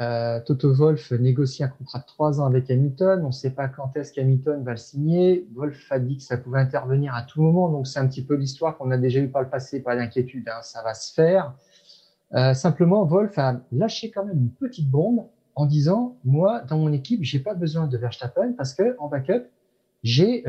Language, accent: French, French